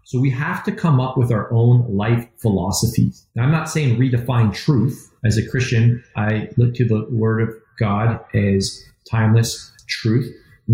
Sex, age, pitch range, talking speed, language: male, 40-59, 110-130 Hz, 175 wpm, English